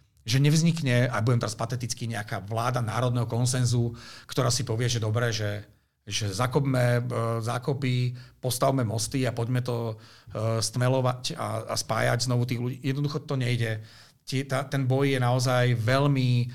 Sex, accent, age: male, native, 40-59